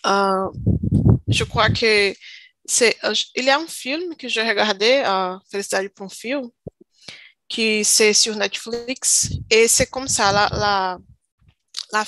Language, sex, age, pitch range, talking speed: Portuguese, female, 20-39, 195-245 Hz, 150 wpm